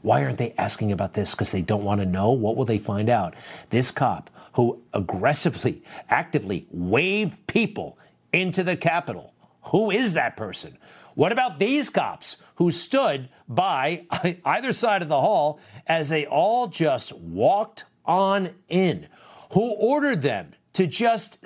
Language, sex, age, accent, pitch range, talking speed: English, male, 50-69, American, 105-155 Hz, 155 wpm